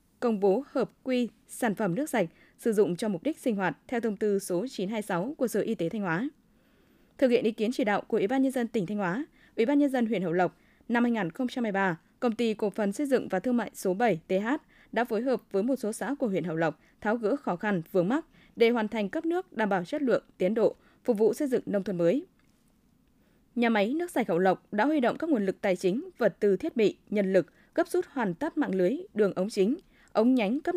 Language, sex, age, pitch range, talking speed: Vietnamese, female, 20-39, 195-255 Hz, 250 wpm